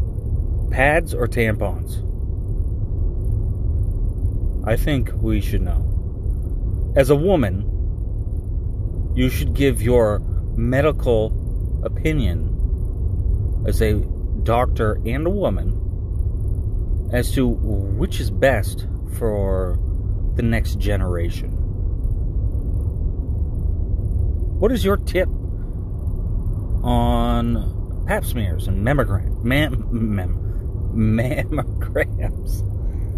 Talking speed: 75 wpm